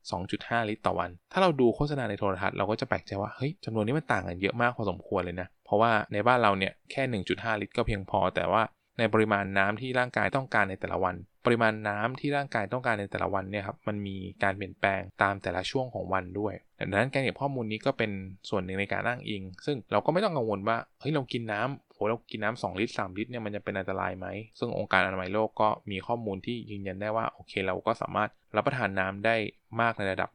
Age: 20-39